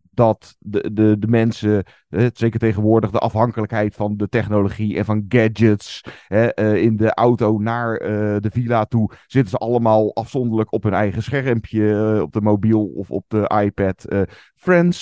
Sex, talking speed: male, 175 wpm